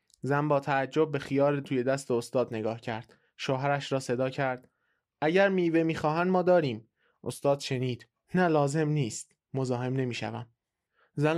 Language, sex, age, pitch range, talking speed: Persian, male, 20-39, 120-150 Hz, 140 wpm